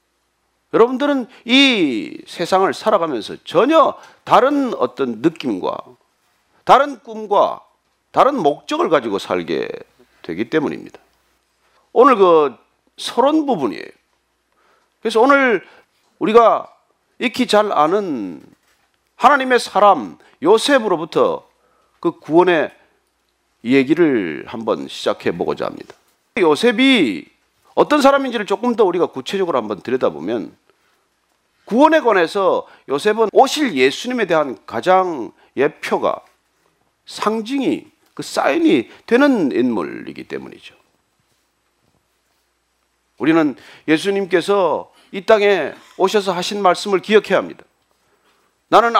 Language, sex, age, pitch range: Korean, male, 40-59, 220-330 Hz